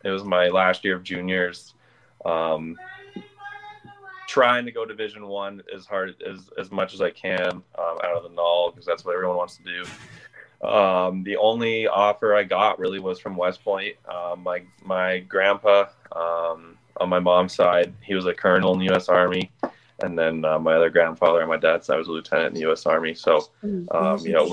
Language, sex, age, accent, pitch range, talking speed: English, male, 20-39, American, 85-100 Hz, 200 wpm